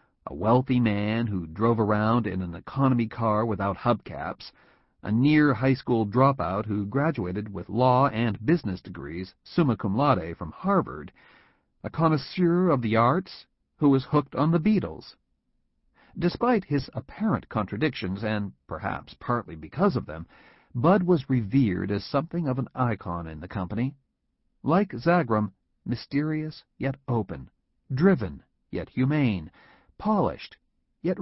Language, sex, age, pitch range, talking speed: English, male, 50-69, 100-140 Hz, 135 wpm